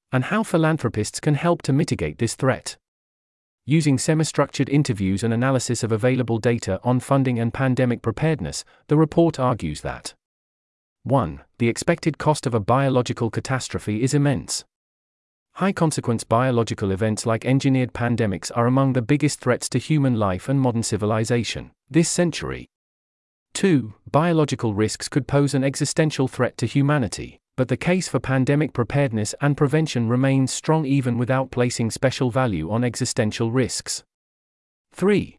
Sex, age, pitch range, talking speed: male, 40-59, 110-140 Hz, 145 wpm